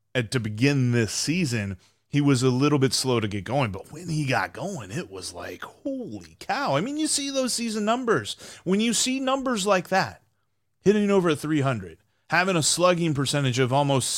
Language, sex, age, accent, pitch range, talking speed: English, male, 30-49, American, 115-180 Hz, 195 wpm